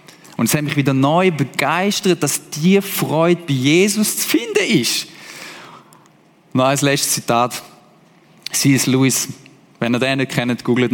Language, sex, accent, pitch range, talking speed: German, male, German, 155-210 Hz, 155 wpm